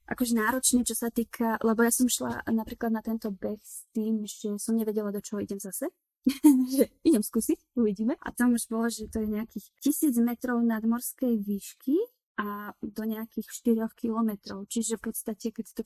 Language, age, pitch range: Slovak, 20-39, 205-240 Hz